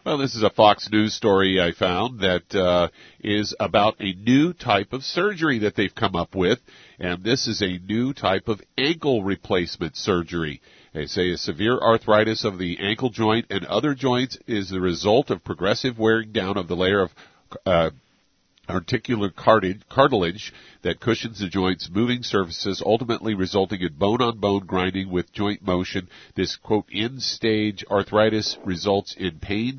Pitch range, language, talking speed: 95-115 Hz, English, 160 wpm